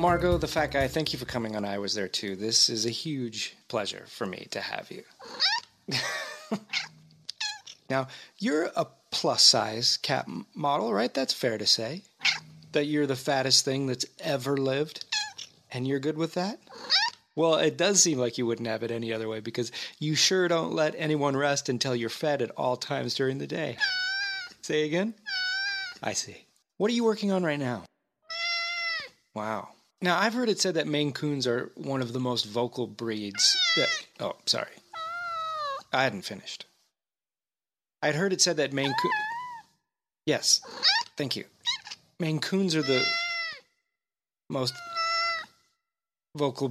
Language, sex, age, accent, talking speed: English, male, 30-49, American, 160 wpm